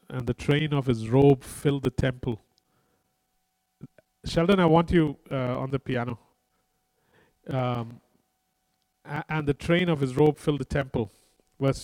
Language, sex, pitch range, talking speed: English, male, 130-155 Hz, 140 wpm